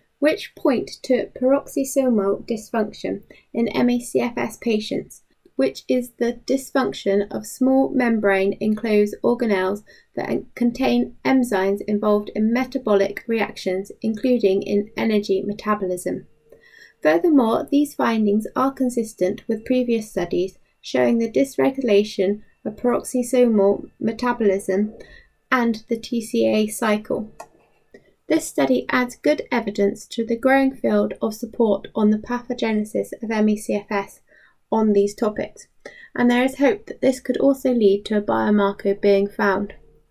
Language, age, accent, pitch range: English, 20-39, British, 205-255 Hz